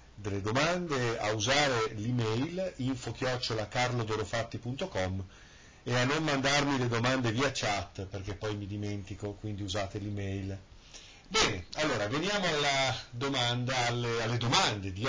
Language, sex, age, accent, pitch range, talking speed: Italian, male, 40-59, native, 100-120 Hz, 125 wpm